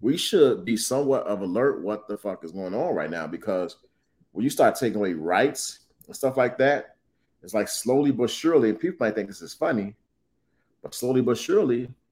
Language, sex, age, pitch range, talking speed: English, male, 30-49, 100-135 Hz, 205 wpm